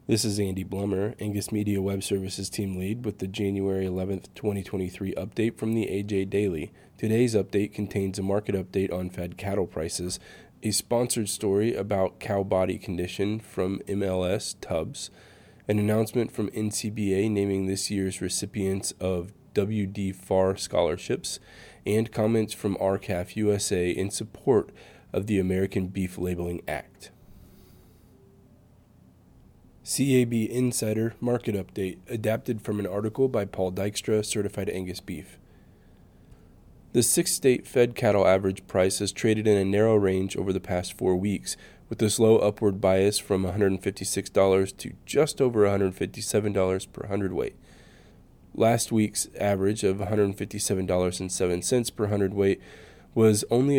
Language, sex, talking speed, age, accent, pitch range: English, male, 130 wpm, 20-39, American, 95-110 Hz